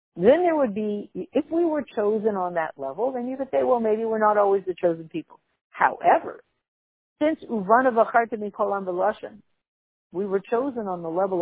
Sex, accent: female, American